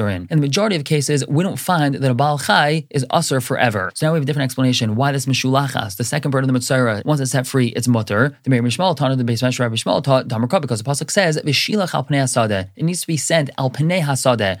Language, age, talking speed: English, 20-39, 245 wpm